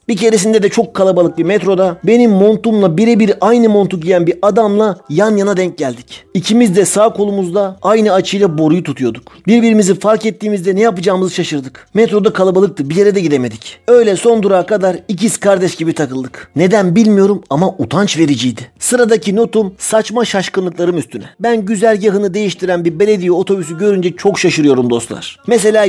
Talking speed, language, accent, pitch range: 160 wpm, Turkish, native, 175-215 Hz